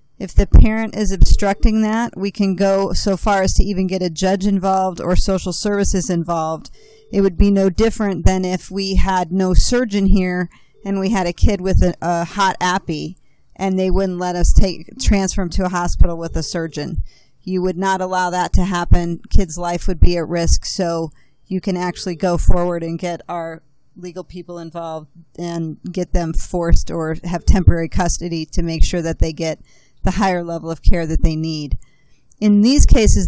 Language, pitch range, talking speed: English, 175-200 Hz, 195 wpm